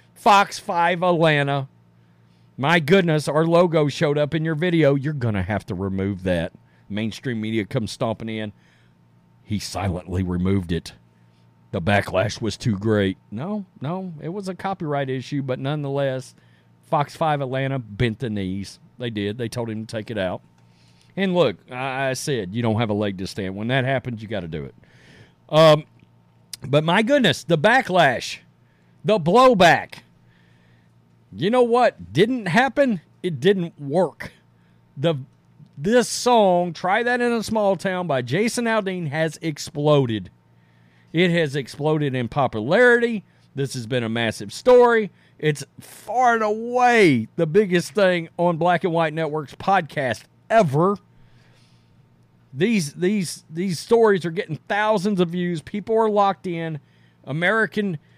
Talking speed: 150 wpm